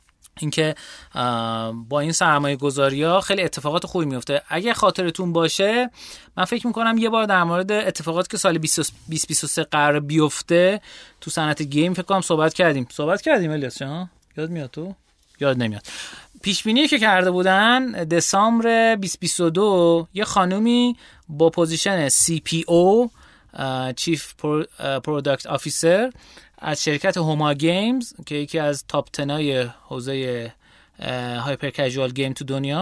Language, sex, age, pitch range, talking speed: Persian, male, 30-49, 140-185 Hz, 135 wpm